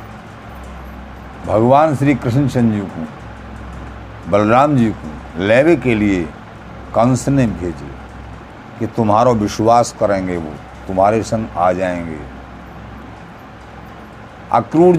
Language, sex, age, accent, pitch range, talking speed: Hindi, male, 50-69, native, 105-170 Hz, 95 wpm